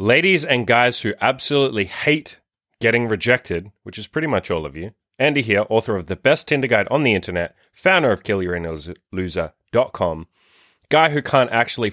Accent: Australian